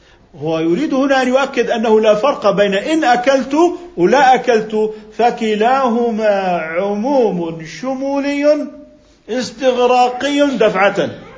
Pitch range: 180-235 Hz